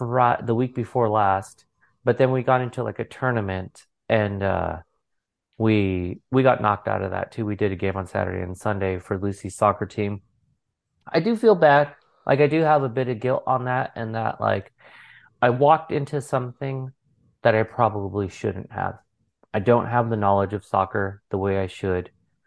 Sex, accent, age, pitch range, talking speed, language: male, American, 30-49, 100-130 Hz, 190 wpm, English